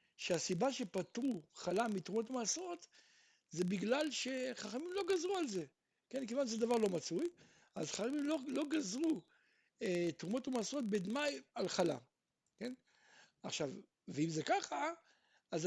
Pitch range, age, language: 200-290 Hz, 60-79, Hebrew